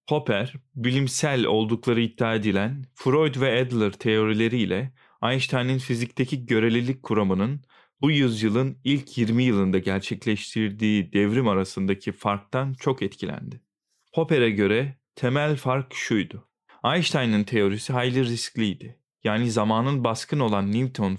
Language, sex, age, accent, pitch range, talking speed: Turkish, male, 40-59, native, 110-135 Hz, 110 wpm